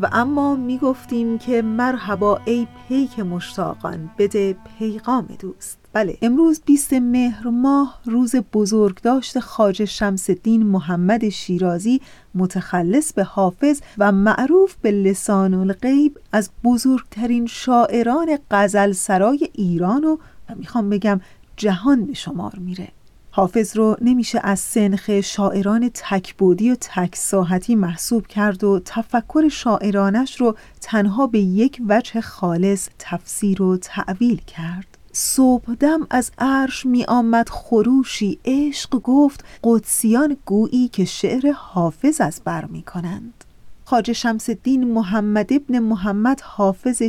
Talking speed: 120 wpm